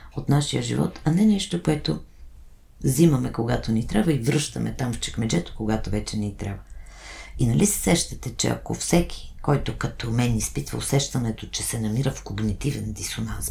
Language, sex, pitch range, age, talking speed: Bulgarian, female, 90-120 Hz, 50-69, 170 wpm